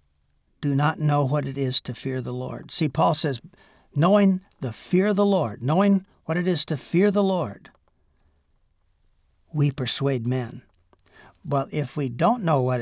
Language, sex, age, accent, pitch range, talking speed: English, male, 60-79, American, 130-155 Hz, 170 wpm